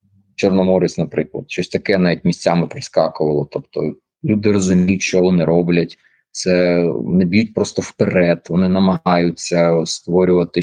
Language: Ukrainian